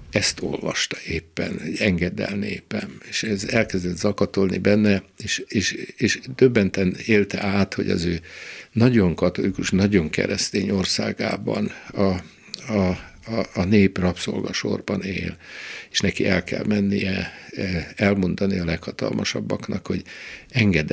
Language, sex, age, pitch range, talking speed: Hungarian, male, 60-79, 90-100 Hz, 115 wpm